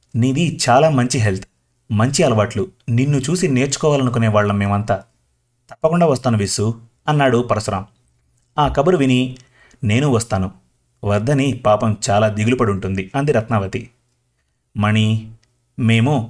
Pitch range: 110-130 Hz